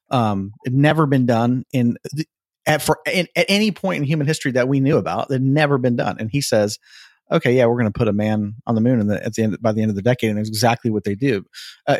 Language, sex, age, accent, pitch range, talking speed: English, male, 40-59, American, 110-140 Hz, 275 wpm